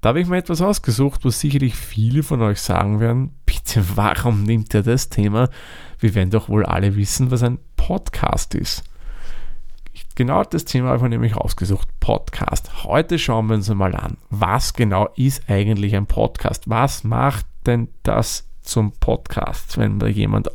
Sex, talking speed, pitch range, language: male, 170 wpm, 100-130 Hz, German